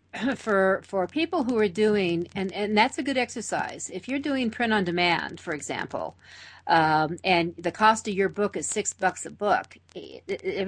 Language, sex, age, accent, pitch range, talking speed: English, female, 50-69, American, 175-215 Hz, 185 wpm